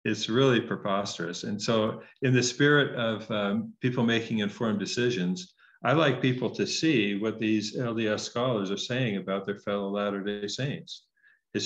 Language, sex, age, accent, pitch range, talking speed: English, male, 50-69, American, 100-120 Hz, 160 wpm